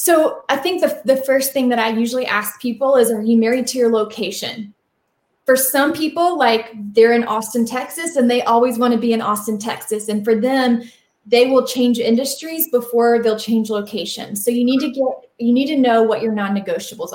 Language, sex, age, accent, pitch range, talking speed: English, female, 20-39, American, 210-255 Hz, 205 wpm